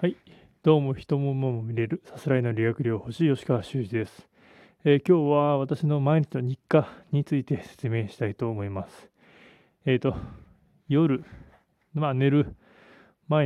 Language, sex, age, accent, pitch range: Japanese, male, 20-39, native, 110-140 Hz